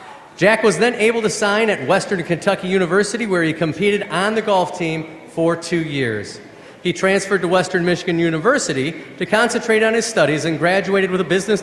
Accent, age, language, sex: American, 30-49, English, male